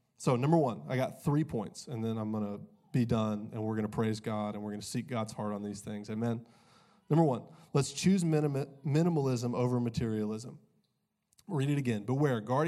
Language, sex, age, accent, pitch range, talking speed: English, male, 20-39, American, 115-140 Hz, 205 wpm